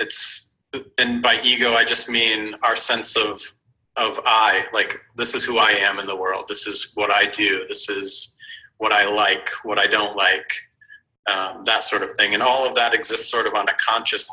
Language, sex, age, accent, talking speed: English, male, 40-59, American, 210 wpm